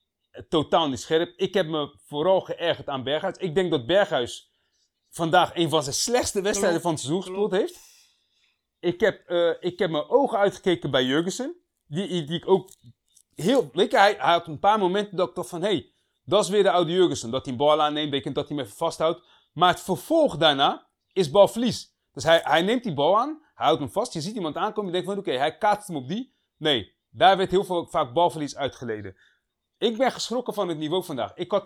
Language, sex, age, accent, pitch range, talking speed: Dutch, male, 30-49, Dutch, 160-200 Hz, 225 wpm